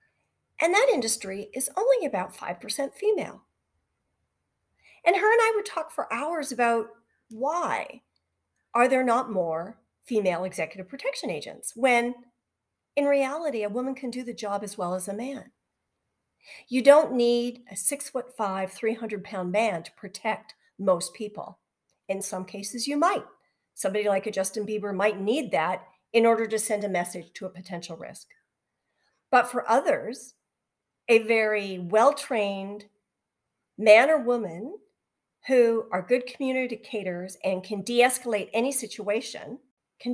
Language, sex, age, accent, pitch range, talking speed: English, female, 40-59, American, 200-275 Hz, 150 wpm